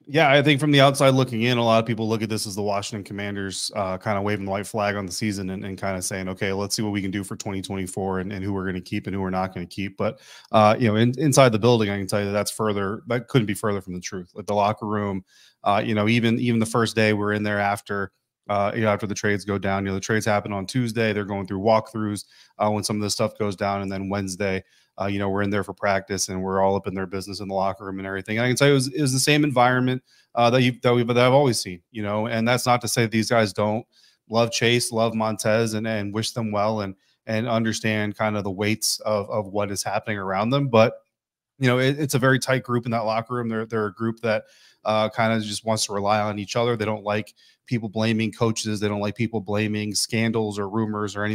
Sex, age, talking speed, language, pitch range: male, 30-49, 280 wpm, English, 100-115 Hz